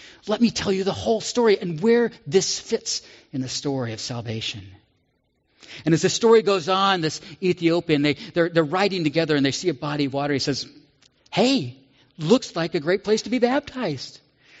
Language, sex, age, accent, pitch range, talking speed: English, male, 40-59, American, 130-195 Hz, 195 wpm